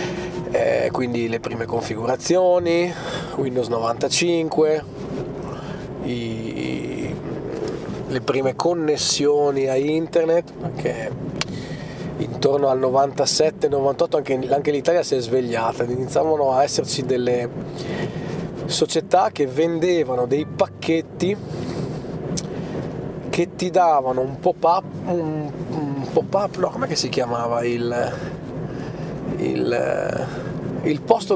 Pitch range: 130-170 Hz